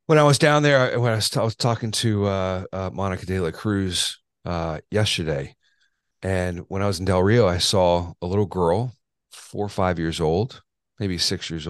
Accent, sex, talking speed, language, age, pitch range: American, male, 210 wpm, English, 40-59, 85-100 Hz